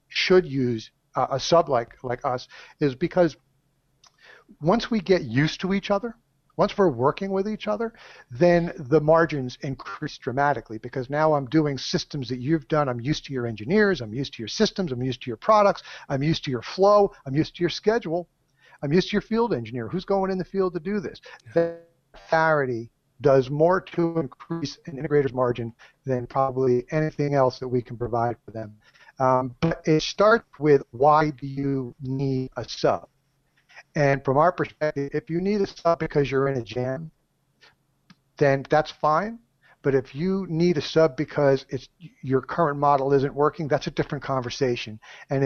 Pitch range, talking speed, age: 135-170 Hz, 180 wpm, 50-69